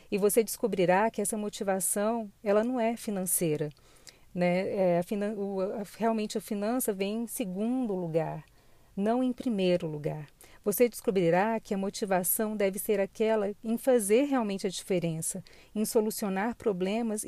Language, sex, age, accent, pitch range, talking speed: Portuguese, female, 40-59, Brazilian, 180-215 Hz, 130 wpm